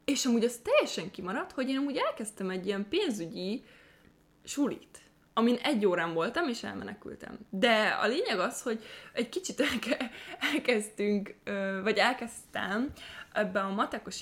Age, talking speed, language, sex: 20-39, 140 wpm, Hungarian, female